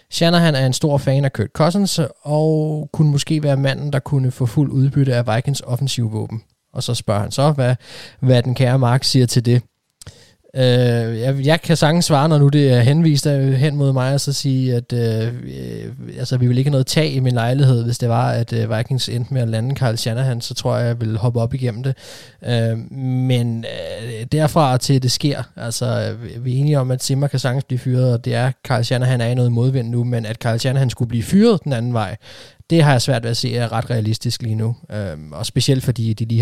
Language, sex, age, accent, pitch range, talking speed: Danish, male, 20-39, native, 115-135 Hz, 240 wpm